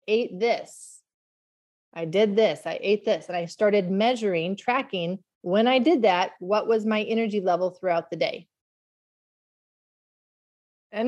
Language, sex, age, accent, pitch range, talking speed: English, female, 30-49, American, 180-250 Hz, 140 wpm